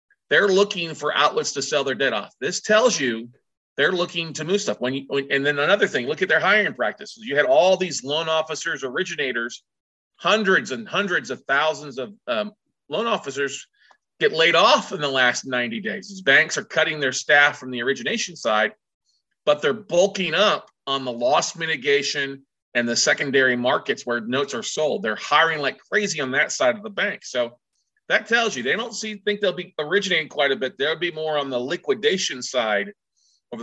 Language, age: English, 40-59